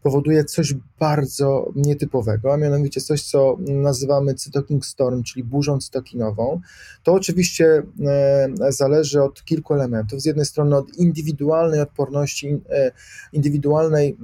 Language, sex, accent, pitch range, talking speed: Polish, male, native, 135-155 Hz, 115 wpm